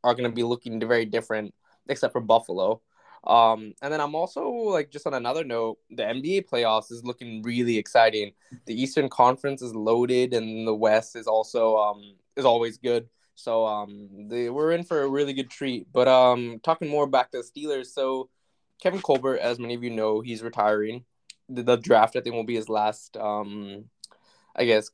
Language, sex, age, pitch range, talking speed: English, male, 20-39, 110-140 Hz, 195 wpm